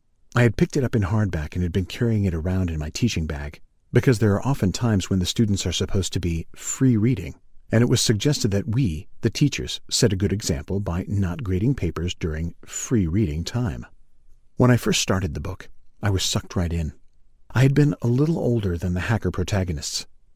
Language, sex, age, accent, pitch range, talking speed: English, male, 40-59, American, 90-115 Hz, 210 wpm